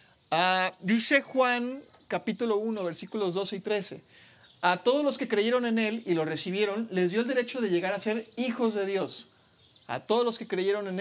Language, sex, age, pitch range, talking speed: Spanish, male, 40-59, 170-230 Hz, 195 wpm